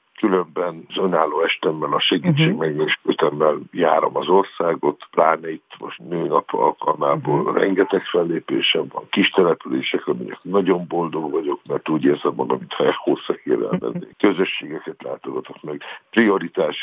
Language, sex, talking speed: Hungarian, male, 120 wpm